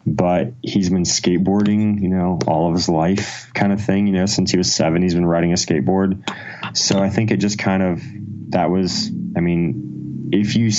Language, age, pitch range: English, 30-49, 85-100 Hz